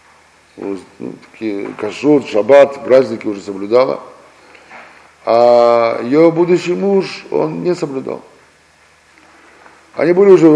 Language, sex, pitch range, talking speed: Russian, male, 120-165 Hz, 95 wpm